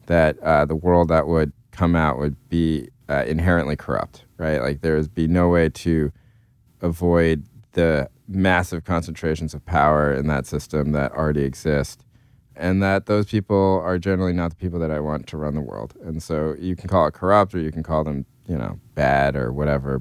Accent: American